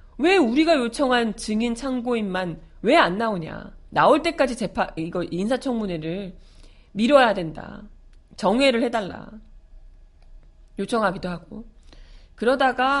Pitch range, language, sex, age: 190-285 Hz, Korean, female, 40-59